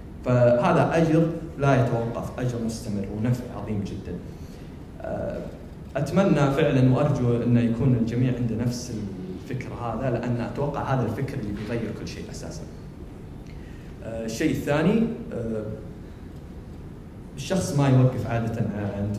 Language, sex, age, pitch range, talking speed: Arabic, male, 20-39, 100-130 Hz, 105 wpm